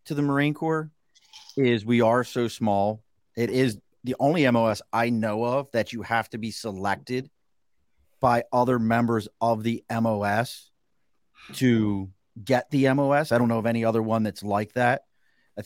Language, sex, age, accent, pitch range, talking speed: English, male, 30-49, American, 105-125 Hz, 170 wpm